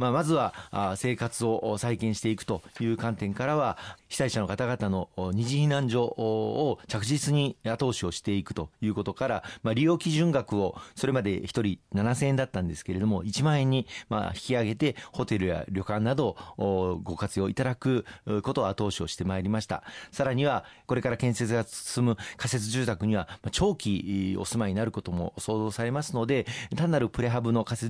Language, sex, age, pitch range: Japanese, male, 40-59, 100-125 Hz